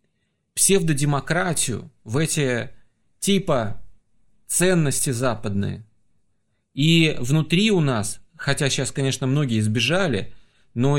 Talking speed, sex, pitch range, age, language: 85 wpm, male, 115-155 Hz, 30-49, Russian